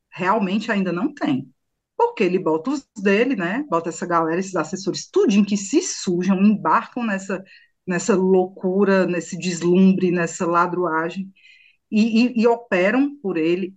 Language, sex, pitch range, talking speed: Portuguese, female, 185-245 Hz, 150 wpm